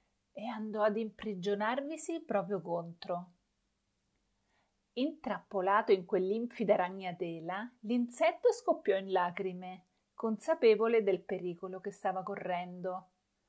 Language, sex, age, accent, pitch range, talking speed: Italian, female, 40-59, native, 180-215 Hz, 90 wpm